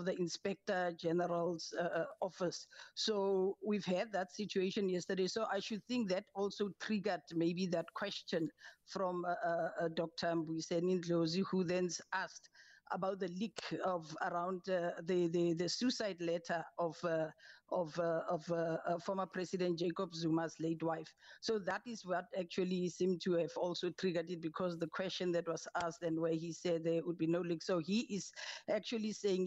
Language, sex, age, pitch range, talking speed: English, female, 50-69, 175-195 Hz, 175 wpm